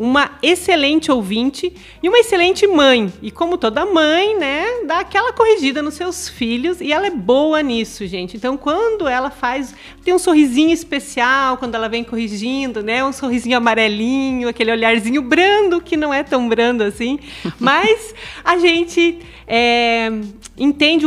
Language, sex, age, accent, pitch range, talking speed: Portuguese, female, 40-59, Brazilian, 240-350 Hz, 155 wpm